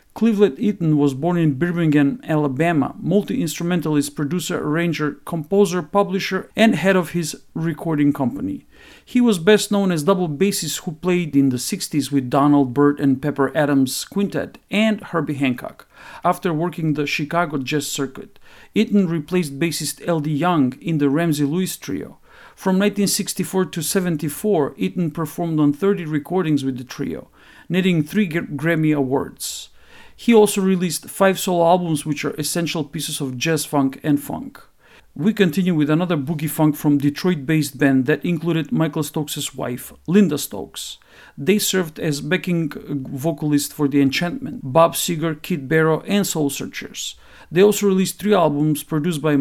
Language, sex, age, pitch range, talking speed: English, male, 50-69, 145-185 Hz, 150 wpm